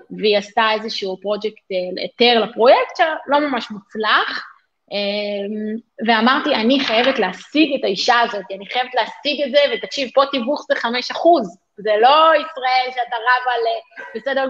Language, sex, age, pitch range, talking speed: Hebrew, female, 30-49, 220-285 Hz, 140 wpm